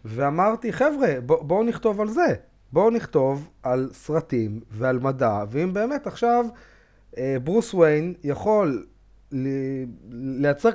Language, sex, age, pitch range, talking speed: Hebrew, male, 30-49, 130-215 Hz, 125 wpm